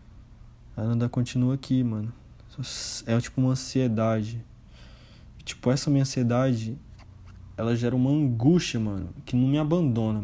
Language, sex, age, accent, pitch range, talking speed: Portuguese, male, 20-39, Brazilian, 110-125 Hz, 125 wpm